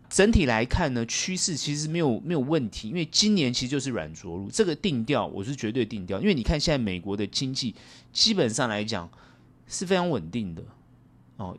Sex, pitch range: male, 110-165 Hz